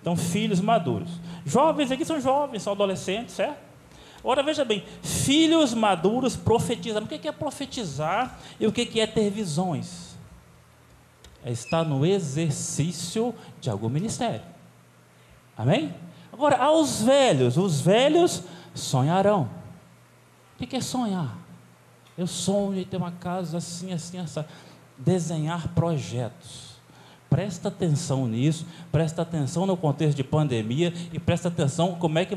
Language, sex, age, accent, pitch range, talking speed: Portuguese, male, 20-39, Brazilian, 135-200 Hz, 130 wpm